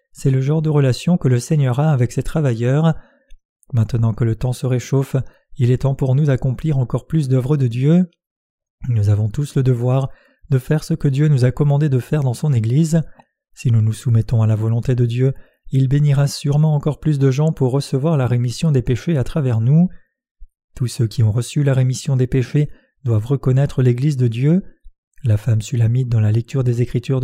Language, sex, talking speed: French, male, 205 wpm